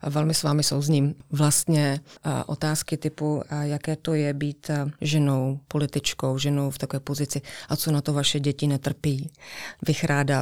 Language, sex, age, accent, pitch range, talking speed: Czech, female, 30-49, native, 145-165 Hz, 165 wpm